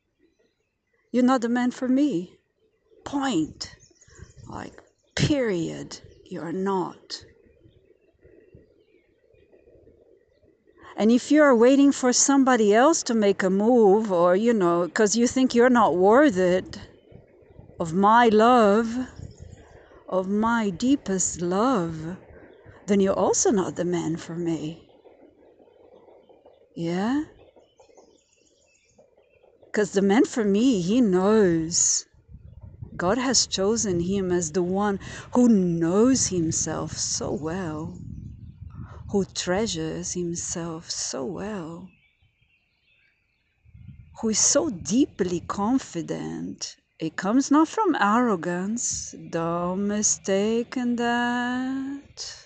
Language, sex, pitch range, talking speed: English, female, 180-275 Hz, 100 wpm